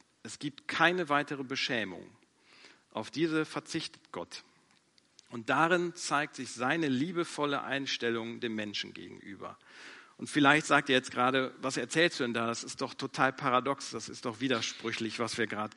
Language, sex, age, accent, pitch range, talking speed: German, male, 40-59, German, 115-145 Hz, 160 wpm